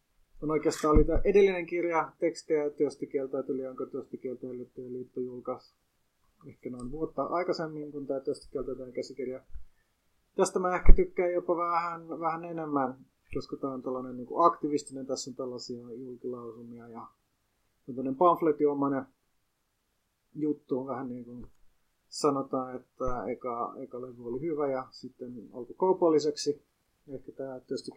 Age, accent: 30-49, native